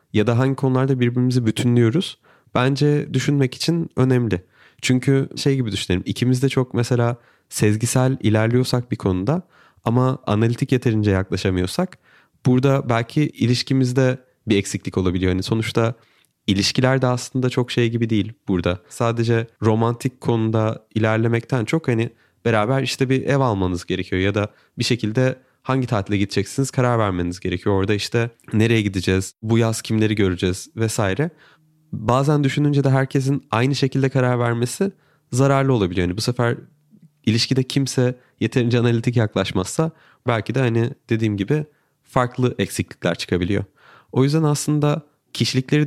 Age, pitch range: 30-49, 110-135 Hz